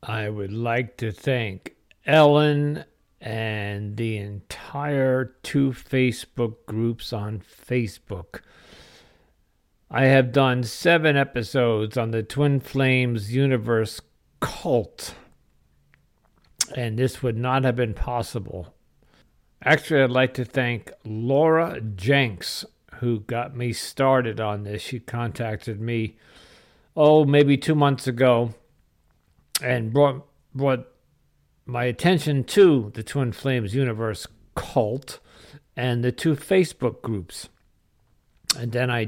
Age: 50-69